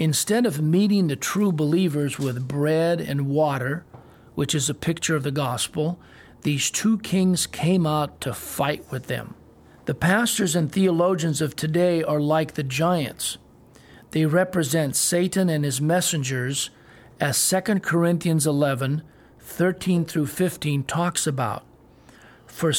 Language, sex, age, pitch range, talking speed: English, male, 50-69, 140-175 Hz, 135 wpm